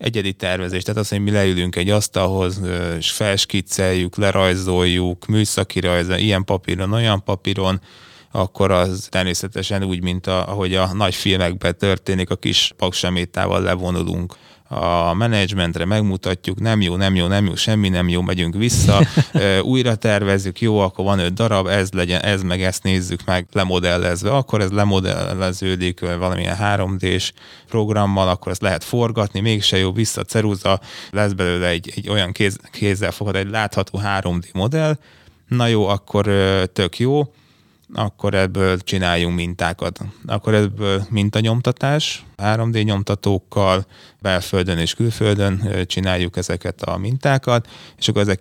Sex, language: male, Hungarian